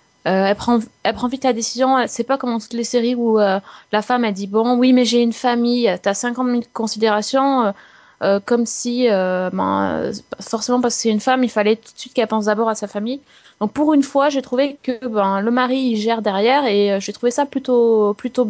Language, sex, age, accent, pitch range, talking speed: French, female, 20-39, French, 205-245 Hz, 240 wpm